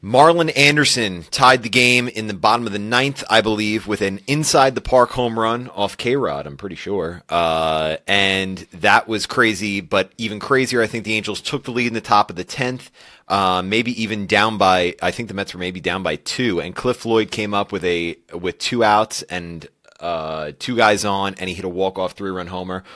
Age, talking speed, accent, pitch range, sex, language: 30-49, 220 wpm, American, 95-110 Hz, male, English